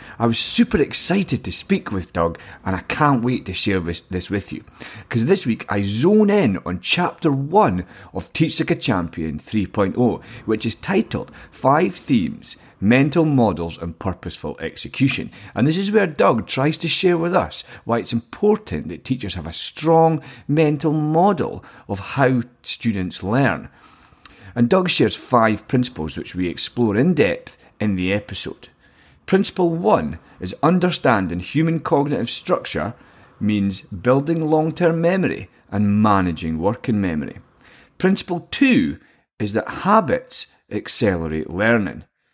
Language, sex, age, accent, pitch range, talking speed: English, male, 30-49, British, 95-155 Hz, 145 wpm